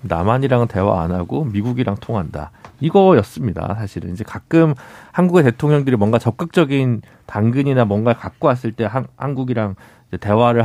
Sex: male